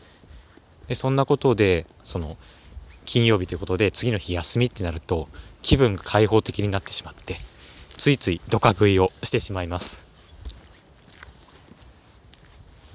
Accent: native